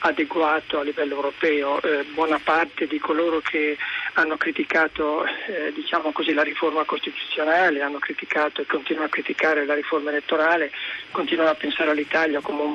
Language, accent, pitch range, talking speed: Italian, native, 155-175 Hz, 145 wpm